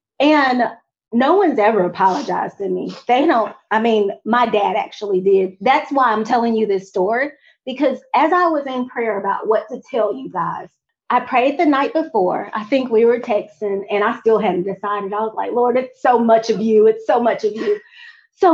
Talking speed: 205 wpm